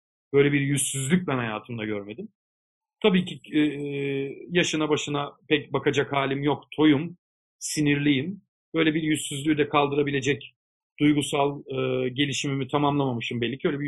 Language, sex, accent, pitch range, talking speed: Turkish, male, native, 140-180 Hz, 130 wpm